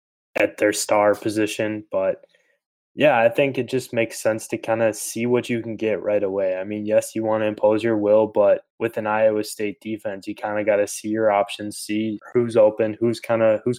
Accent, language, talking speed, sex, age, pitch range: American, English, 215 wpm, male, 10-29, 105-115 Hz